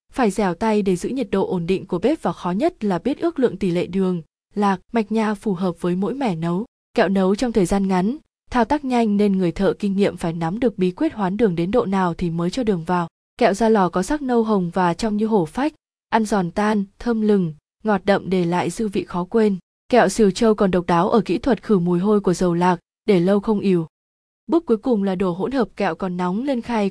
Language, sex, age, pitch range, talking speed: Vietnamese, female, 20-39, 180-225 Hz, 255 wpm